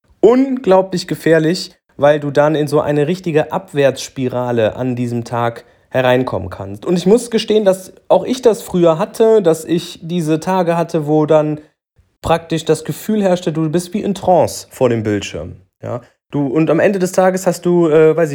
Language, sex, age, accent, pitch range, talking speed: German, male, 30-49, German, 130-175 Hz, 175 wpm